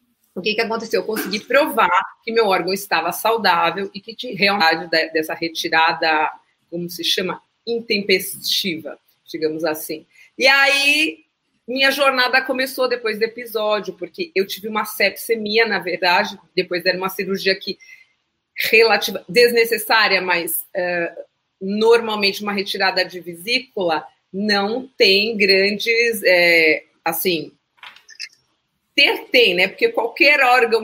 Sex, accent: female, Brazilian